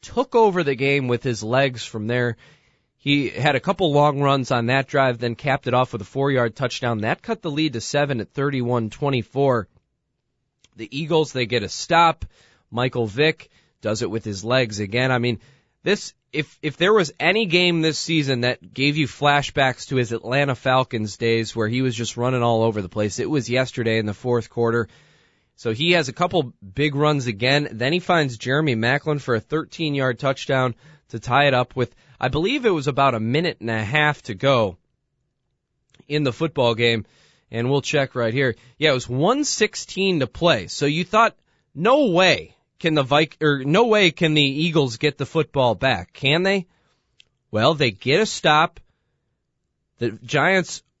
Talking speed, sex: 190 wpm, male